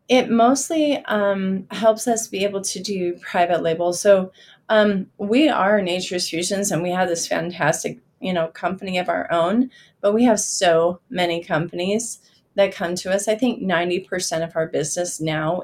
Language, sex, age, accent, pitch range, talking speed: English, female, 30-49, American, 170-205 Hz, 175 wpm